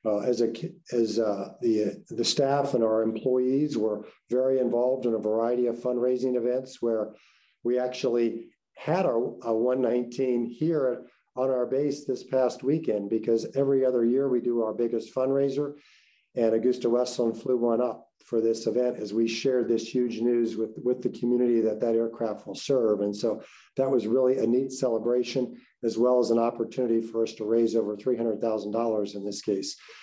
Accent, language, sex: American, English, male